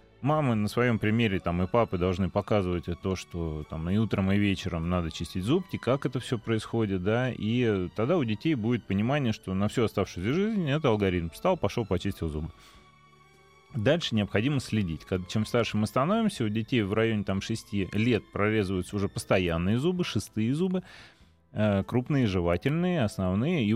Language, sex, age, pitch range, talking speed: Russian, male, 30-49, 95-125 Hz, 155 wpm